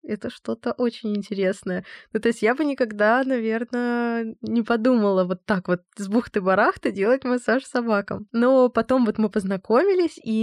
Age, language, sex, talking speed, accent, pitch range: 20-39, Russian, female, 160 wpm, native, 190-240 Hz